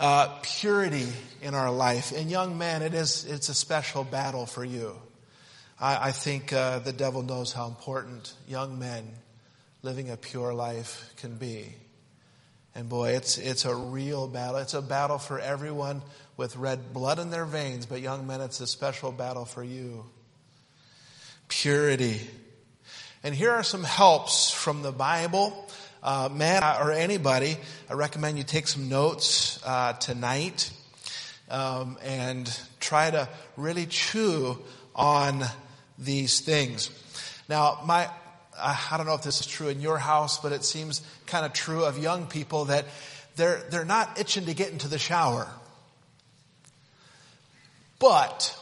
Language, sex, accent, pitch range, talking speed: English, male, American, 130-155 Hz, 160 wpm